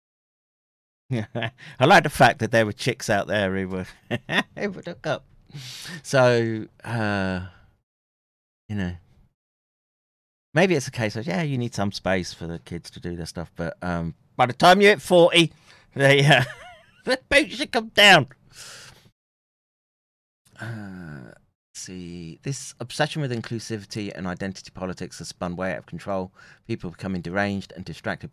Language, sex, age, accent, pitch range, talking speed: English, male, 30-49, British, 95-130 Hz, 155 wpm